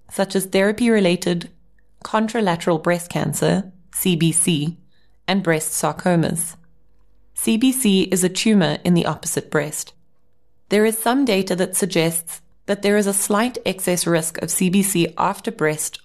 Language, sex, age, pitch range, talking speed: English, female, 20-39, 170-210 Hz, 130 wpm